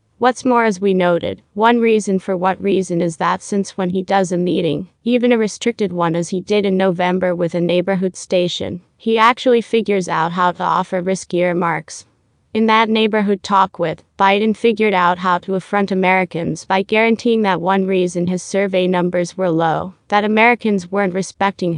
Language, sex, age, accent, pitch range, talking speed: English, female, 30-49, American, 180-210 Hz, 180 wpm